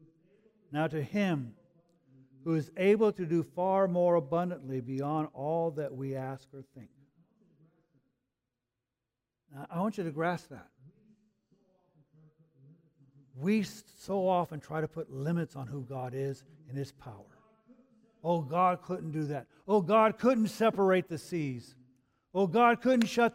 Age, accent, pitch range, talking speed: 60-79, American, 135-185 Hz, 135 wpm